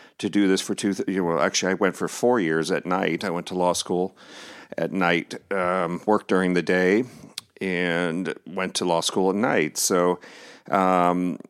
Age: 40-59